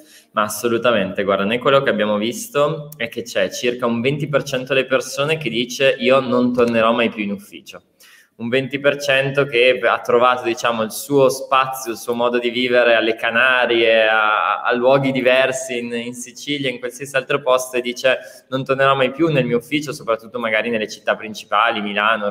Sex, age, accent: male, 20-39, native